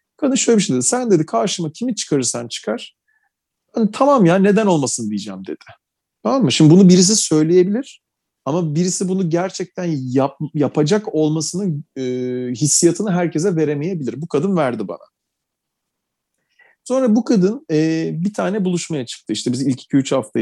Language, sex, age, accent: Turkish, male, 40-59, native